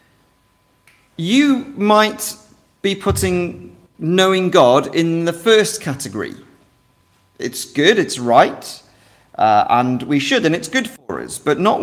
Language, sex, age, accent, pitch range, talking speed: English, male, 40-59, British, 150-210 Hz, 125 wpm